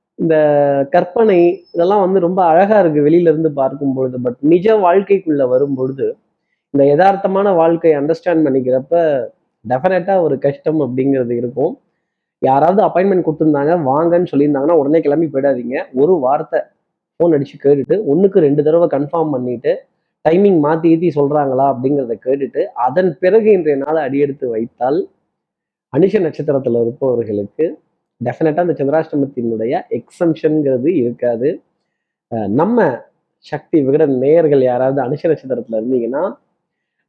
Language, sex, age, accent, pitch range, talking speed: Tamil, male, 20-39, native, 130-175 Hz, 110 wpm